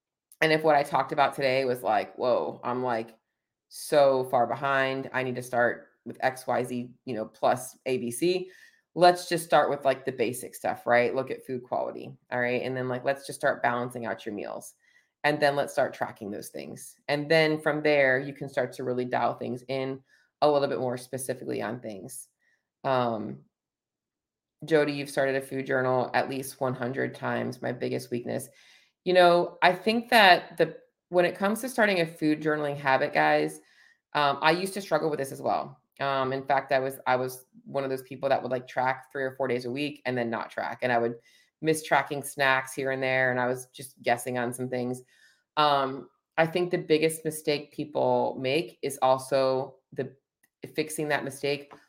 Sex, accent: female, American